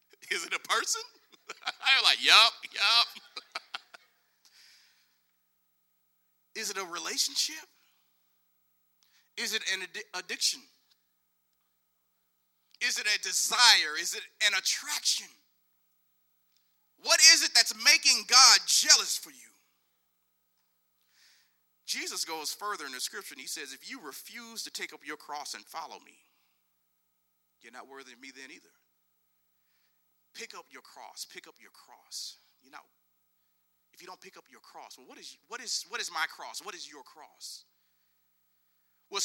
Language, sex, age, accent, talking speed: English, male, 40-59, American, 135 wpm